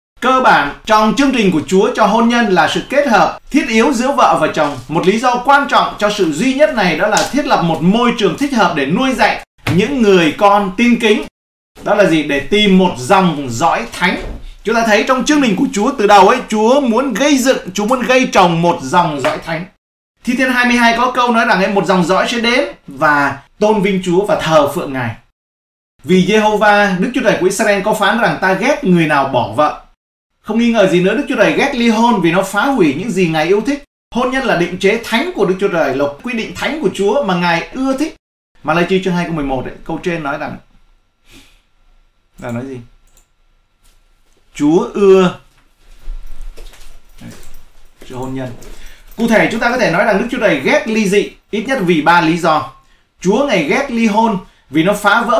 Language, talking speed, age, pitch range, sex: Vietnamese, 220 wpm, 30-49, 170-240 Hz, male